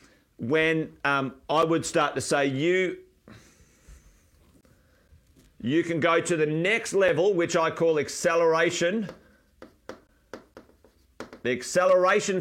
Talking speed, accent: 100 wpm, Australian